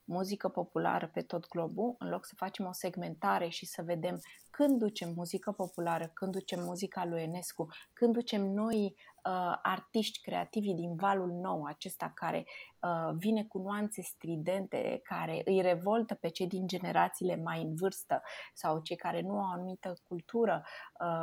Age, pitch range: 20-39, 170-225 Hz